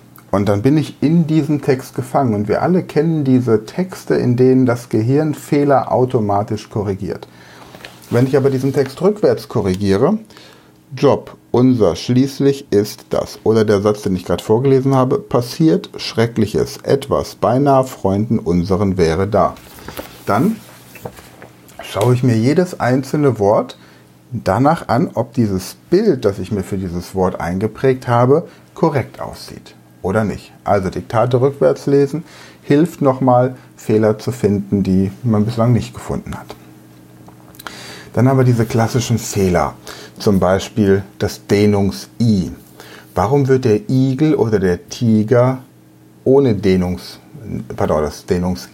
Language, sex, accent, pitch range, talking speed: German, male, German, 95-135 Hz, 130 wpm